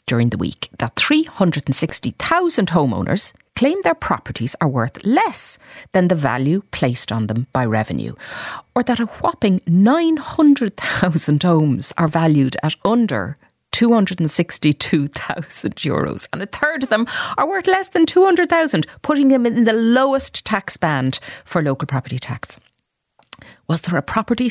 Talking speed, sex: 140 wpm, female